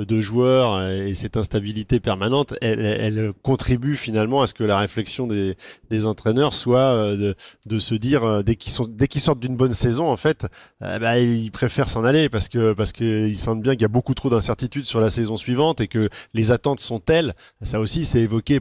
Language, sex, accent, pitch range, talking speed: French, male, French, 110-135 Hz, 215 wpm